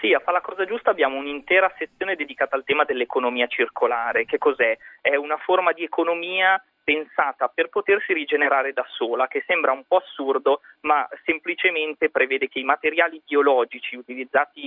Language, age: Italian, 30-49